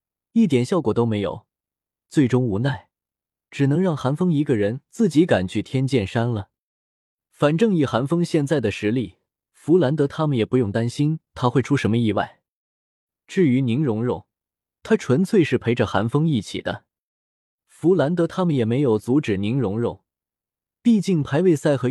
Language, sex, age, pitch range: Chinese, male, 20-39, 110-155 Hz